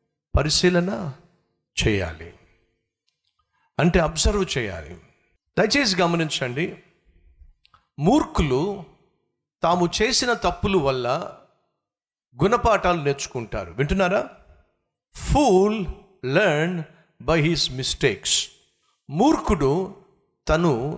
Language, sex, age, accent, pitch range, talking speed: Telugu, male, 50-69, native, 135-195 Hz, 65 wpm